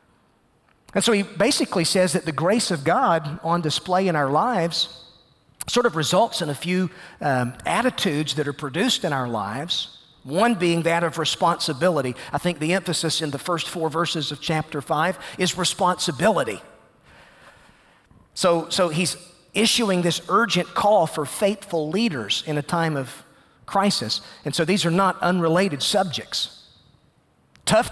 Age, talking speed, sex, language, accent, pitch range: 40-59, 155 wpm, male, English, American, 155-195 Hz